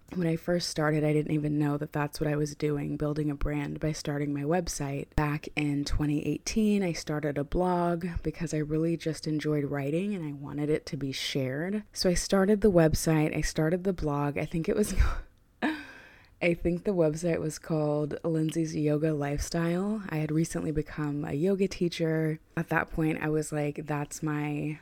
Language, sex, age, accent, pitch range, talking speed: English, female, 20-39, American, 145-165 Hz, 190 wpm